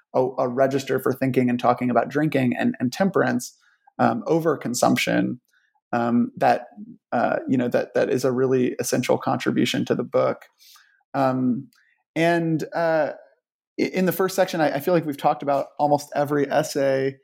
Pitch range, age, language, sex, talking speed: 130-150 Hz, 20-39, English, male, 165 wpm